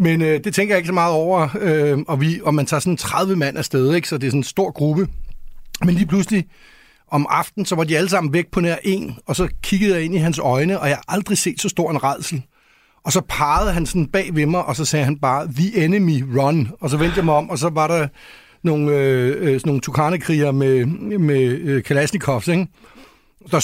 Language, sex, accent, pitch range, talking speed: Danish, male, native, 145-180 Hz, 235 wpm